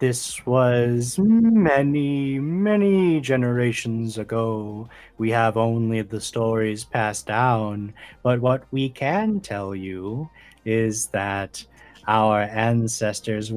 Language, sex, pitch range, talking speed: English, male, 105-130 Hz, 100 wpm